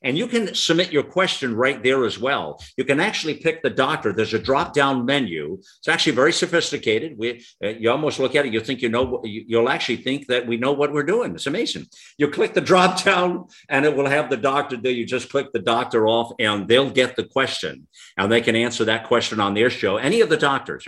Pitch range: 115-150 Hz